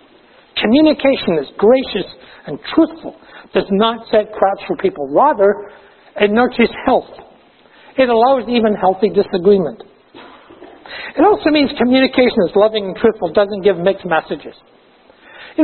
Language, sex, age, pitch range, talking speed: English, male, 60-79, 180-255 Hz, 125 wpm